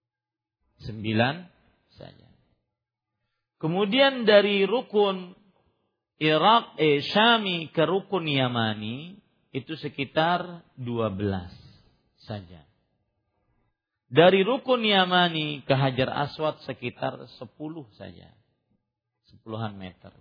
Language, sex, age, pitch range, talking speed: Malay, male, 50-69, 115-175 Hz, 80 wpm